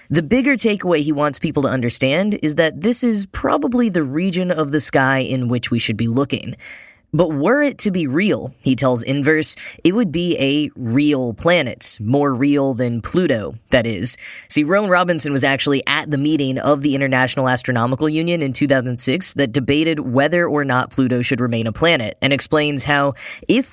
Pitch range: 125-165 Hz